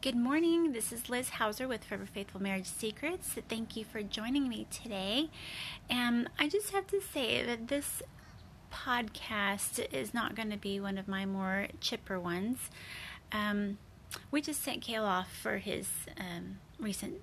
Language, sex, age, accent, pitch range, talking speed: English, female, 30-49, American, 200-250 Hz, 165 wpm